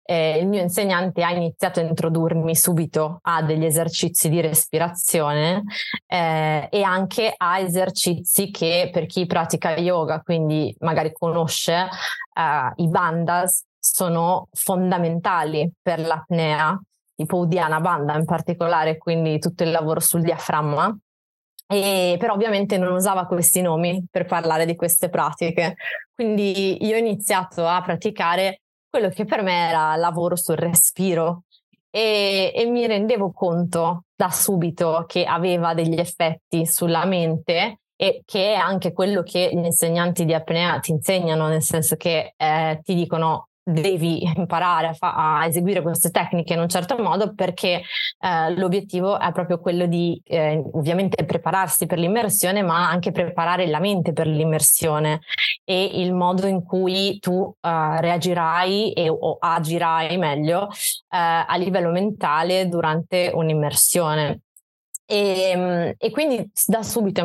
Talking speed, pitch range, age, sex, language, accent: 135 wpm, 165-185 Hz, 20-39, female, Italian, native